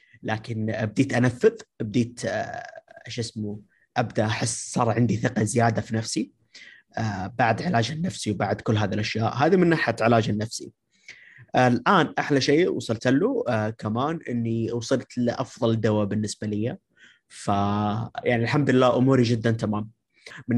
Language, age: Arabic, 30-49